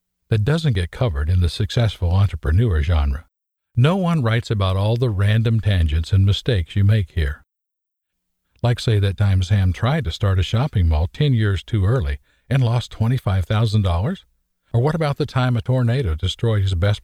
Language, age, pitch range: English, 50-69, 90-120 Hz